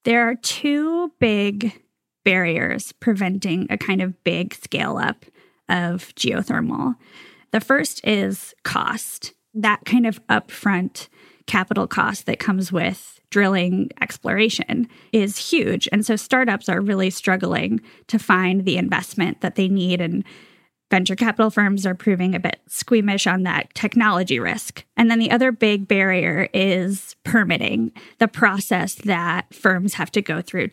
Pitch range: 185-225 Hz